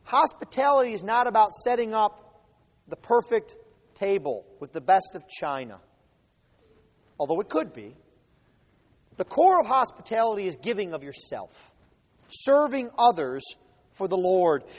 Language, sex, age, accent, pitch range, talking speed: English, male, 40-59, American, 190-270 Hz, 125 wpm